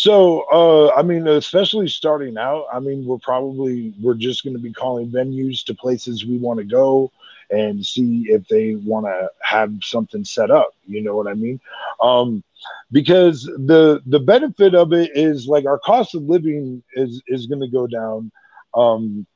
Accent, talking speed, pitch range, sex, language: American, 185 wpm, 120-155 Hz, male, English